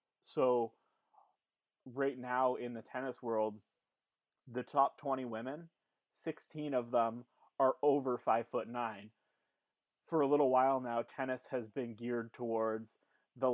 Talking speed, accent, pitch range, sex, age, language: 135 wpm, American, 115-130 Hz, male, 20-39, English